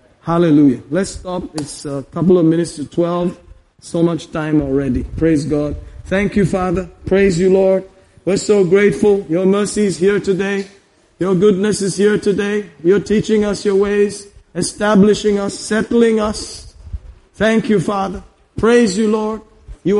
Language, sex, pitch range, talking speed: English, male, 155-205 Hz, 155 wpm